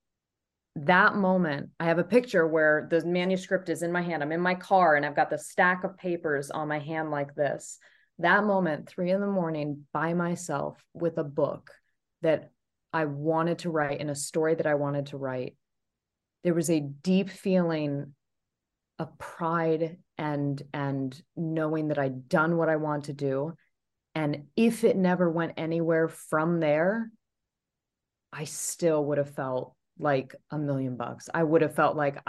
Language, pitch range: English, 145-175 Hz